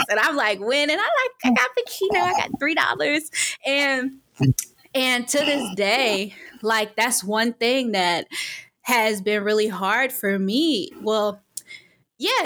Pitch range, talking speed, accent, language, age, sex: 200-255 Hz, 160 wpm, American, English, 20-39, female